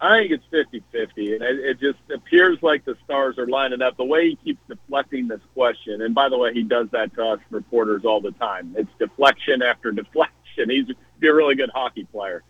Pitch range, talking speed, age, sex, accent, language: 115-155 Hz, 210 wpm, 50-69, male, American, English